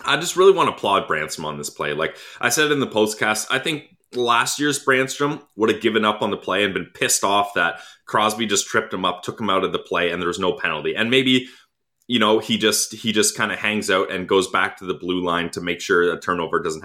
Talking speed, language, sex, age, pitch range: 265 wpm, English, male, 30-49, 110-165 Hz